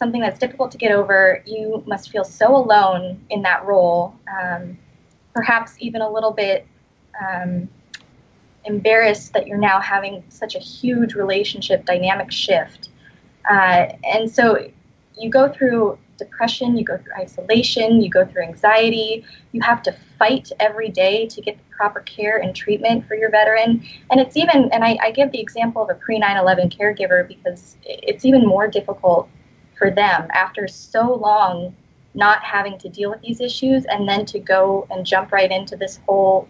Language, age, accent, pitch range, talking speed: English, 20-39, American, 185-230 Hz, 170 wpm